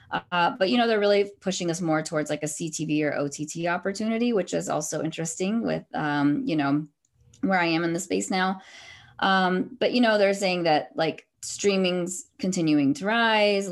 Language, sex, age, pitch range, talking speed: English, female, 20-39, 150-185 Hz, 190 wpm